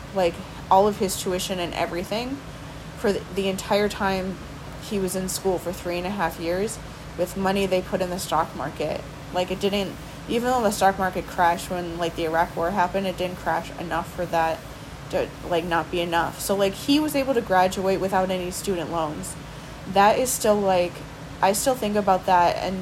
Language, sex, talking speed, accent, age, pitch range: English, female, 200 wpm, American, 20-39, 170-200 Hz